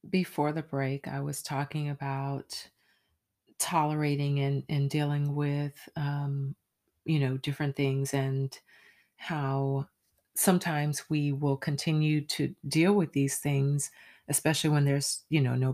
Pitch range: 135-155 Hz